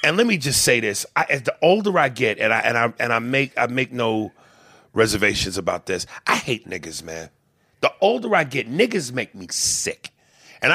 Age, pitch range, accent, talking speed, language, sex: 40-59, 120-175 Hz, American, 210 wpm, English, male